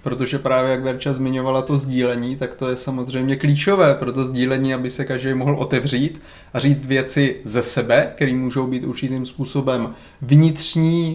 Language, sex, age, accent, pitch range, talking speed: Czech, male, 30-49, native, 125-140 Hz, 165 wpm